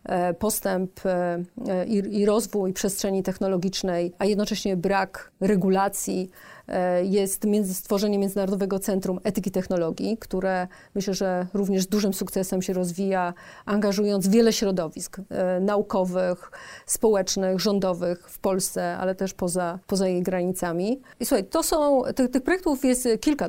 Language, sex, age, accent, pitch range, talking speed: Polish, female, 40-59, native, 190-230 Hz, 120 wpm